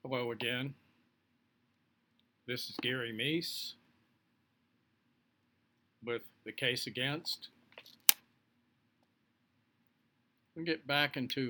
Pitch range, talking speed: 115-130 Hz, 80 wpm